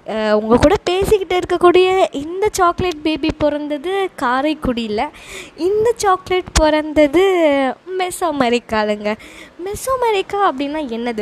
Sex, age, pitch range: female, 20-39, 225-320 Hz